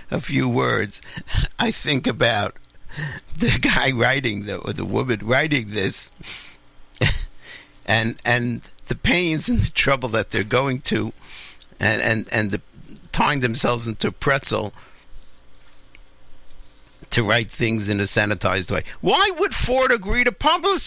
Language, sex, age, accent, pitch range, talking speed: English, male, 60-79, American, 110-175 Hz, 140 wpm